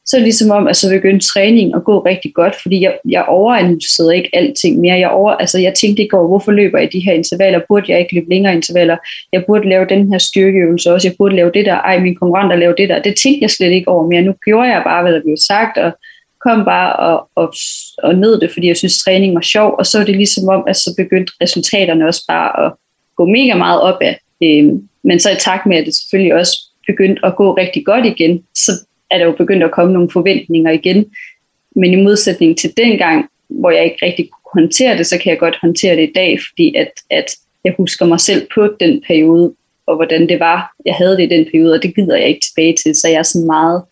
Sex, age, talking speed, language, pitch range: female, 20-39, 250 wpm, Danish, 170-205 Hz